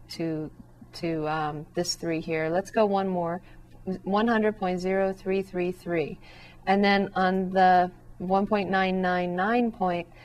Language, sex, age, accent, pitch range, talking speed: English, female, 40-59, American, 160-195 Hz, 160 wpm